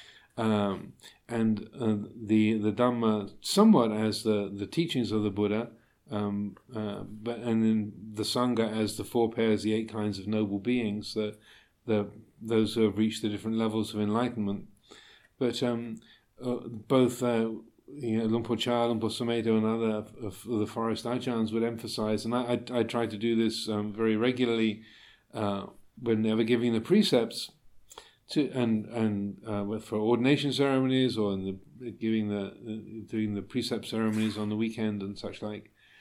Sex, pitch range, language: male, 110-120 Hz, English